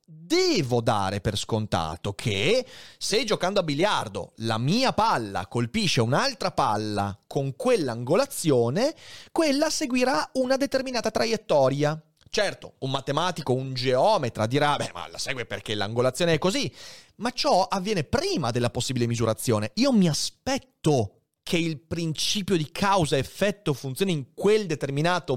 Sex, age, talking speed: male, 30-49, 130 wpm